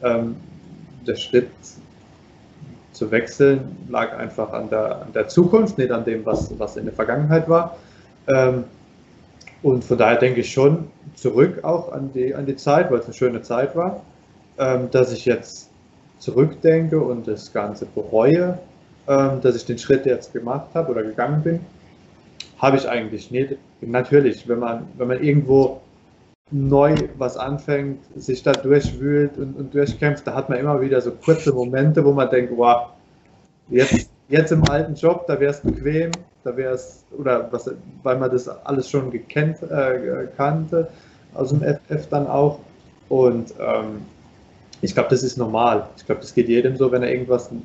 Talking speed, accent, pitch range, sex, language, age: 165 wpm, German, 120-145 Hz, male, German, 20-39